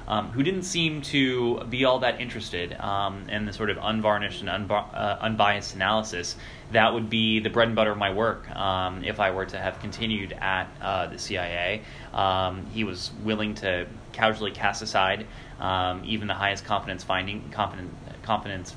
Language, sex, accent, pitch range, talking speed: English, male, American, 95-110 Hz, 175 wpm